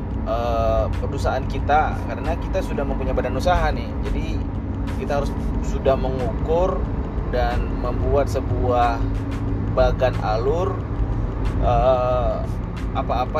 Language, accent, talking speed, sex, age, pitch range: Indonesian, native, 90 wpm, male, 30-49, 100-130 Hz